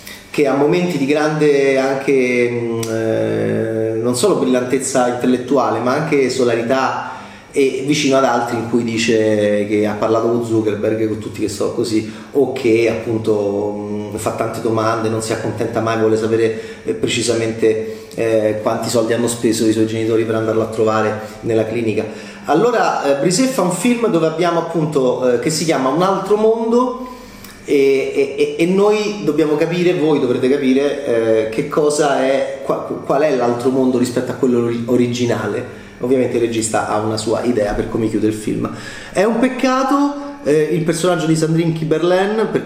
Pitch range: 115-155 Hz